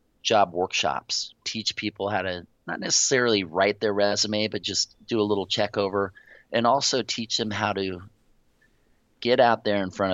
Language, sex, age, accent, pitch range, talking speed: English, male, 30-49, American, 90-105 Hz, 170 wpm